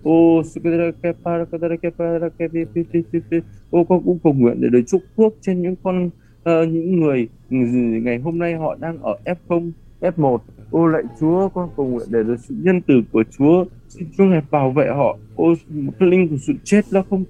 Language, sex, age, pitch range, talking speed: Vietnamese, male, 20-39, 130-170 Hz, 170 wpm